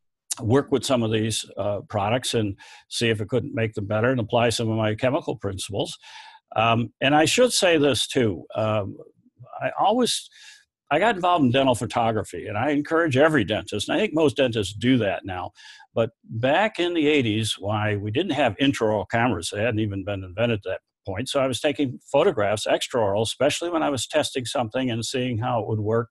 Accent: American